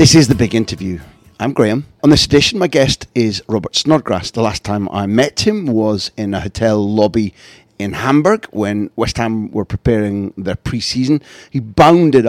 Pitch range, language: 105-135 Hz, English